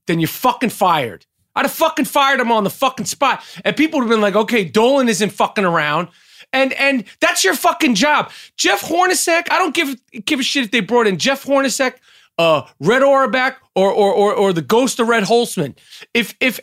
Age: 30-49